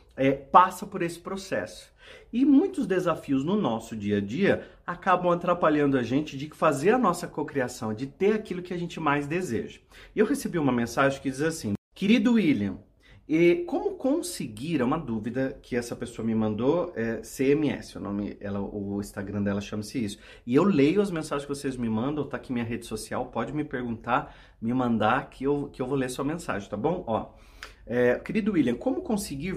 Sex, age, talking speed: male, 40-59, 180 wpm